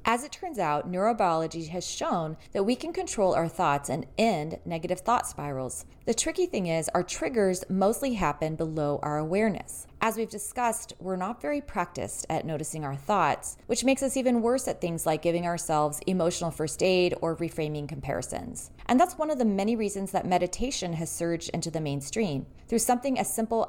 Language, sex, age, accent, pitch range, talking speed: English, female, 30-49, American, 155-225 Hz, 185 wpm